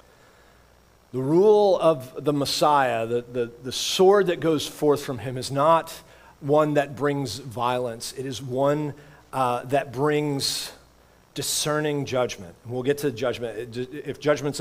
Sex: male